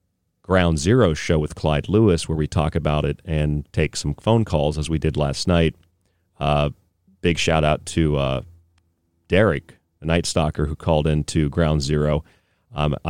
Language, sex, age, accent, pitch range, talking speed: English, male, 40-59, American, 75-90 Hz, 170 wpm